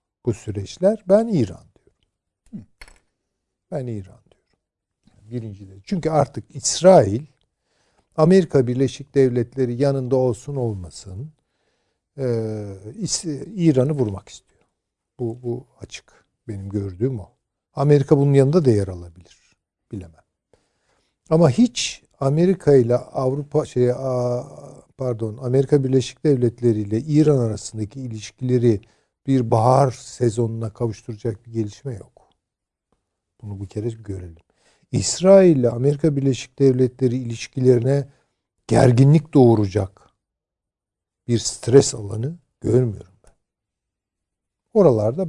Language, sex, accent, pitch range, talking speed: Turkish, male, native, 110-140 Hz, 100 wpm